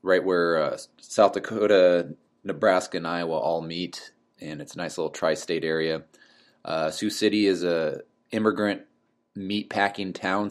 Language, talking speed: English, 145 wpm